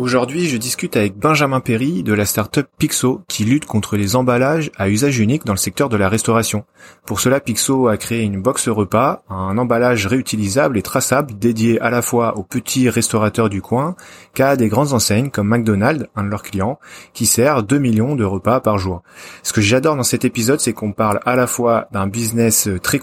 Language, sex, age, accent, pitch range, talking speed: French, male, 30-49, French, 105-135 Hz, 205 wpm